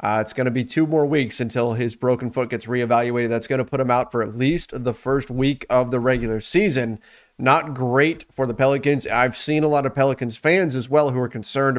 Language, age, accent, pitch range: English, 30-49, American, 125-155 Hz